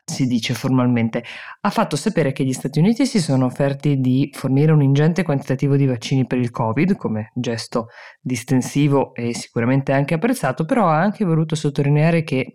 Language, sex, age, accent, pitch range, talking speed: Italian, female, 20-39, native, 125-150 Hz, 170 wpm